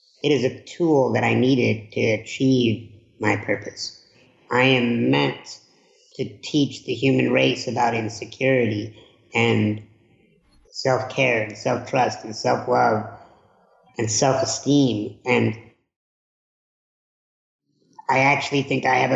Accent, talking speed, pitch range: American, 110 wpm, 115-135 Hz